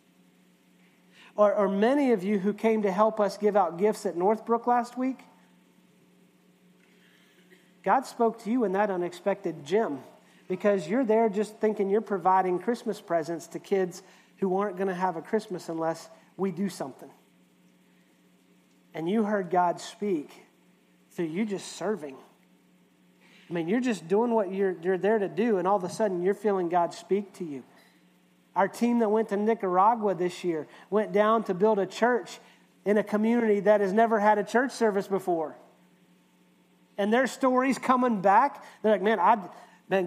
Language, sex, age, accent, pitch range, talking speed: English, male, 40-59, American, 180-225 Hz, 170 wpm